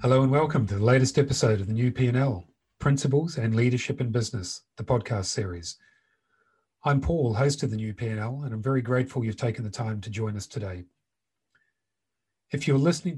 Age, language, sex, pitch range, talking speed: 40-59, English, male, 110-140 Hz, 185 wpm